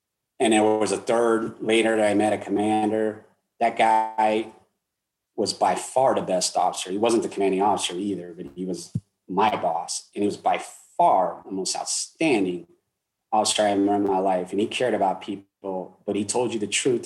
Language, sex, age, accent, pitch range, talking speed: English, male, 30-49, American, 95-120 Hz, 195 wpm